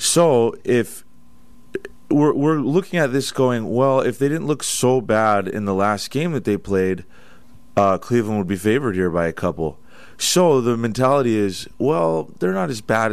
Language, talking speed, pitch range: English, 185 wpm, 105-135 Hz